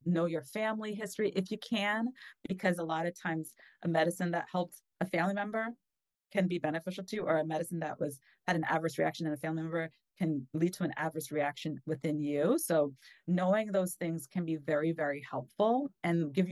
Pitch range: 155-185 Hz